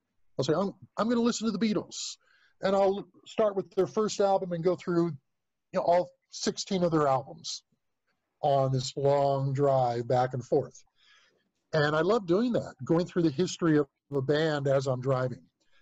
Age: 50-69